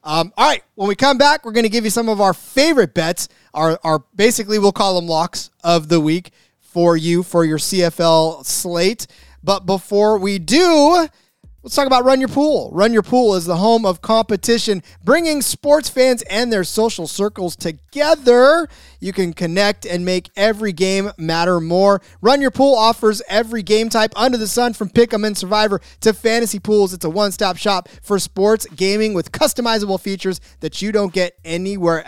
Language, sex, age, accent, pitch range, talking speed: English, male, 30-49, American, 175-225 Hz, 185 wpm